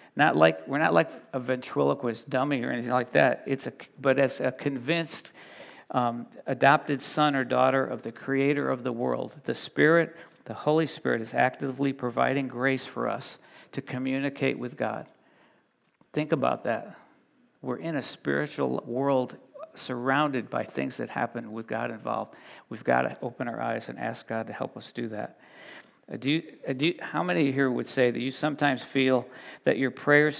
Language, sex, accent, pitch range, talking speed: English, male, American, 125-145 Hz, 180 wpm